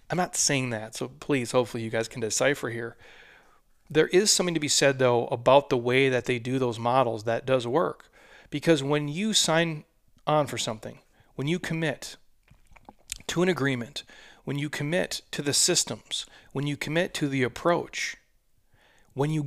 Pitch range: 120-155 Hz